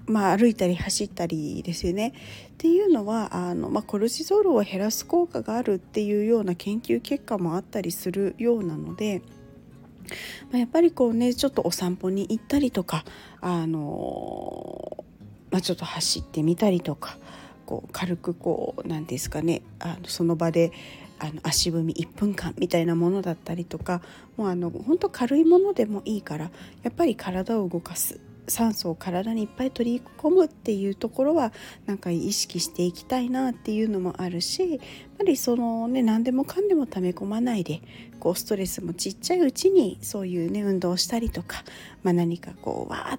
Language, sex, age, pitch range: Japanese, female, 40-59, 175-240 Hz